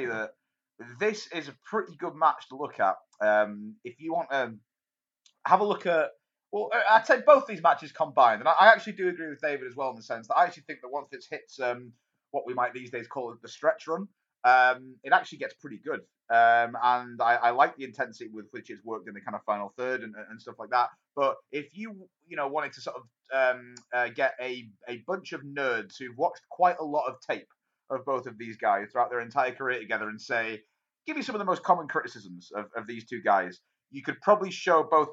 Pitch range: 120-175 Hz